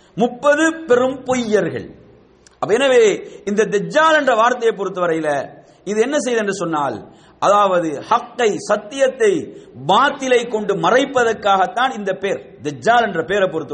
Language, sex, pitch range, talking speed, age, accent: English, male, 185-270 Hz, 120 wpm, 50-69, Indian